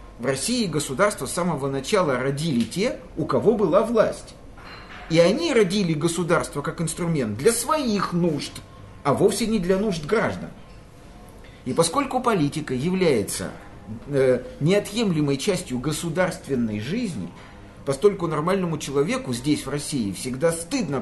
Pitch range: 130-195 Hz